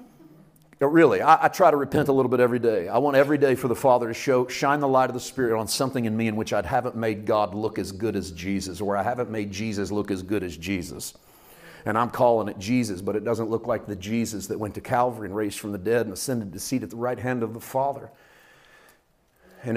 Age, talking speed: 40-59, 260 wpm